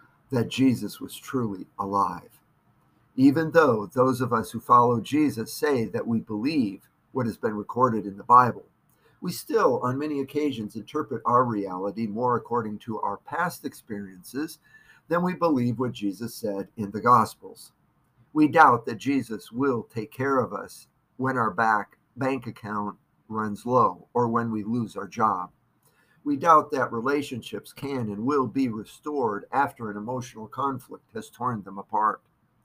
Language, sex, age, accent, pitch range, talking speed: English, male, 50-69, American, 110-140 Hz, 155 wpm